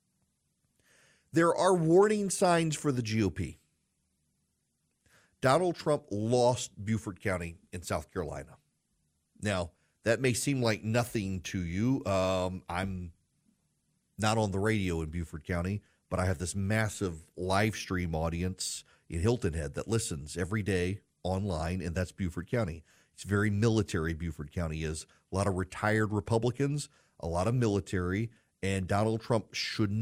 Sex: male